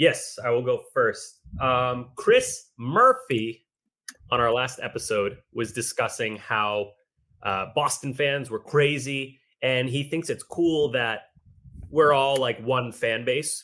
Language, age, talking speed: English, 30-49, 140 wpm